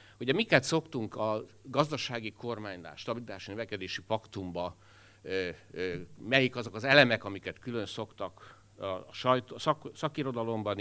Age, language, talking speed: 60-79, Hungarian, 105 wpm